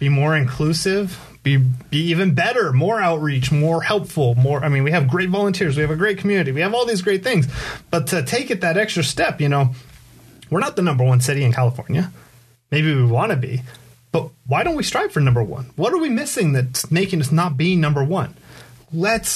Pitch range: 125-165 Hz